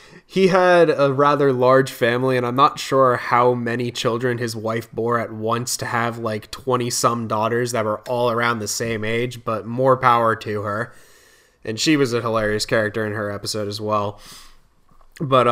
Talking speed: 180 wpm